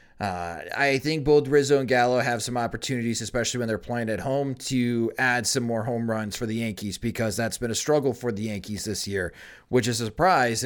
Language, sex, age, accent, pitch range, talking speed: English, male, 30-49, American, 115-145 Hz, 220 wpm